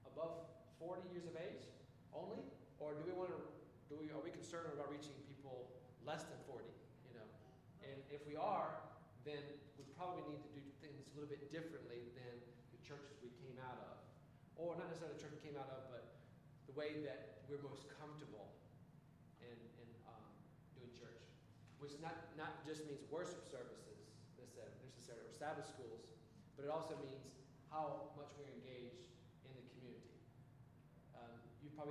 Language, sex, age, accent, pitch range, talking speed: English, male, 40-59, American, 130-155 Hz, 160 wpm